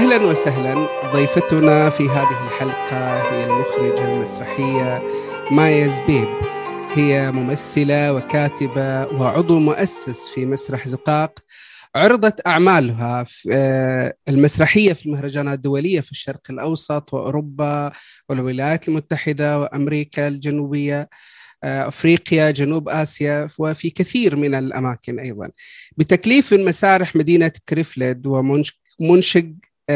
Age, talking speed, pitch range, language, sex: 30-49, 95 wpm, 140-165 Hz, Arabic, male